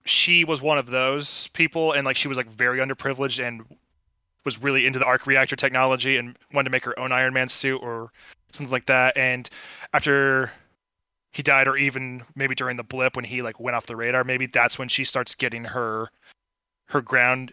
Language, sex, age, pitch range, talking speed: English, male, 20-39, 125-140 Hz, 205 wpm